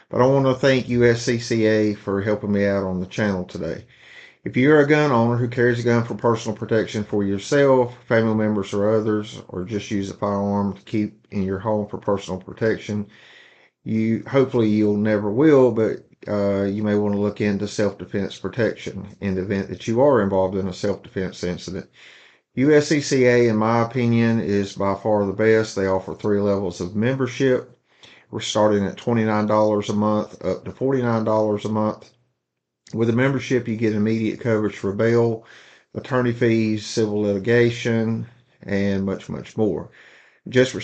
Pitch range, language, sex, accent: 100-115 Hz, English, male, American